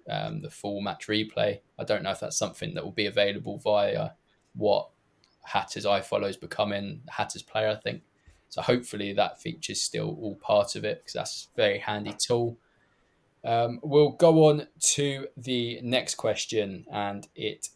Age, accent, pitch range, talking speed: 20-39, British, 105-125 Hz, 170 wpm